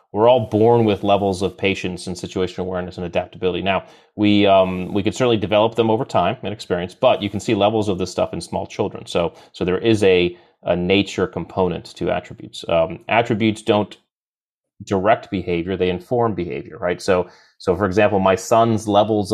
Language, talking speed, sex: English, 190 wpm, male